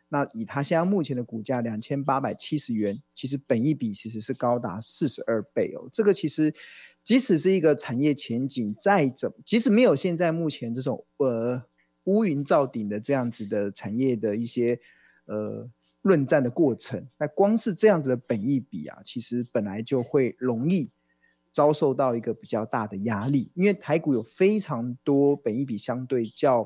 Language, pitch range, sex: Chinese, 115-160 Hz, male